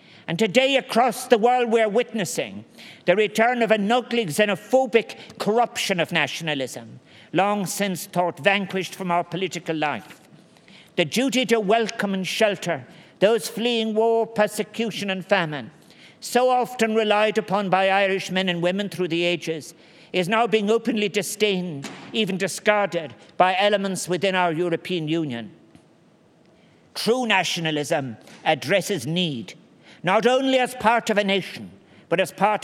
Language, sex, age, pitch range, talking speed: English, male, 50-69, 180-225 Hz, 140 wpm